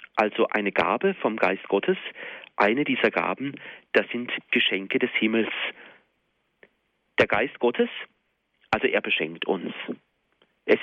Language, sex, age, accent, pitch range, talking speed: German, male, 40-59, German, 105-145 Hz, 120 wpm